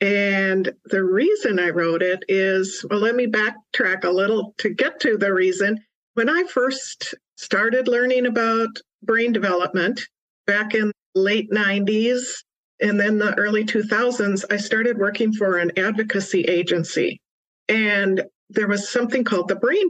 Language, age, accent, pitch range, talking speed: English, 50-69, American, 185-225 Hz, 150 wpm